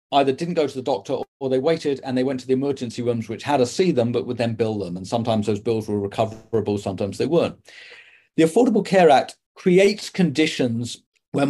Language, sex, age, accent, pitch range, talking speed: English, male, 40-59, British, 115-145 Hz, 220 wpm